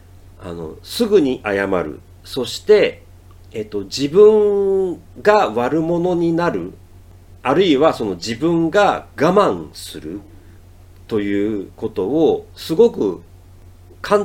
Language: Japanese